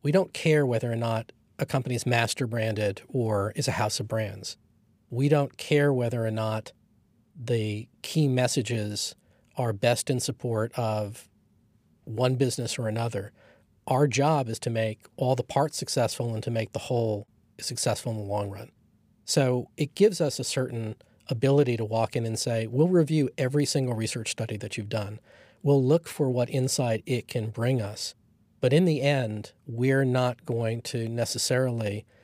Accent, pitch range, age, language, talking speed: American, 110-130 Hz, 40-59, English, 170 wpm